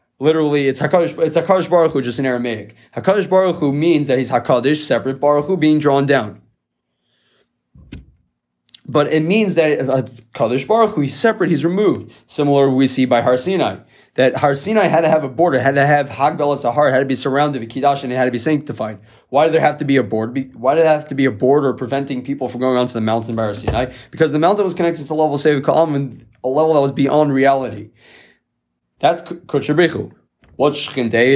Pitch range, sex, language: 125-155 Hz, male, English